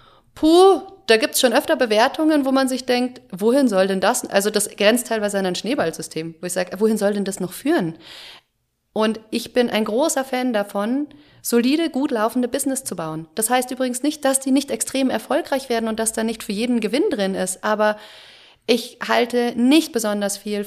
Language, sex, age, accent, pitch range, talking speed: German, female, 30-49, German, 195-245 Hz, 200 wpm